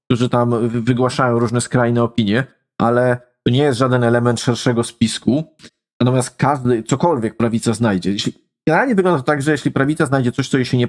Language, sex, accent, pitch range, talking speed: Polish, male, native, 120-140 Hz, 175 wpm